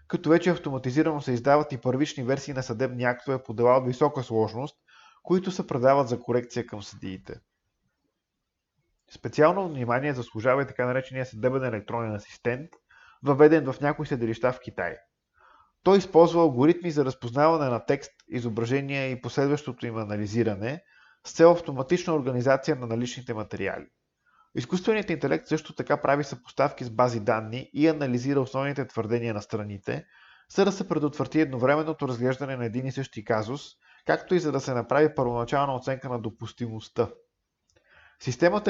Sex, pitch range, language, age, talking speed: male, 120-150 Hz, Bulgarian, 20-39, 145 wpm